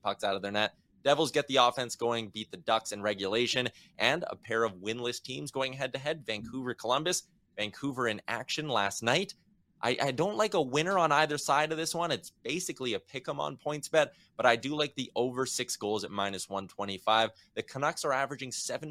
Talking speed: 205 wpm